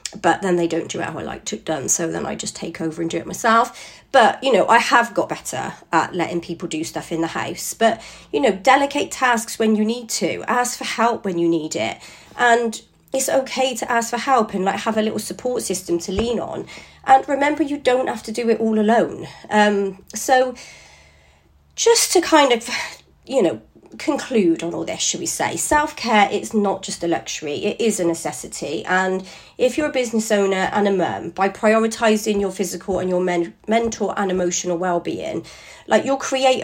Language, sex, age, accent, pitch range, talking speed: English, female, 40-59, British, 175-235 Hz, 205 wpm